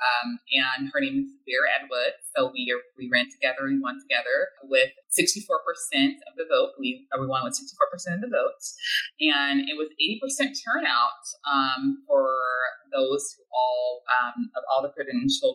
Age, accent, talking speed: 20-39, American, 165 wpm